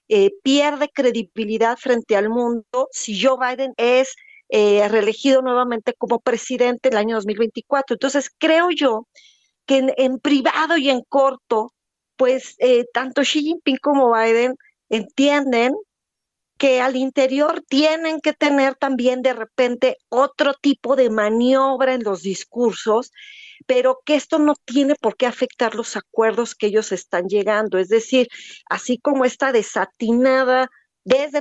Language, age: Spanish, 40-59